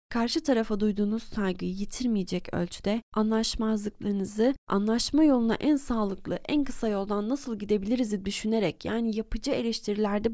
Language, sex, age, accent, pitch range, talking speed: Turkish, female, 30-49, native, 205-290 Hz, 115 wpm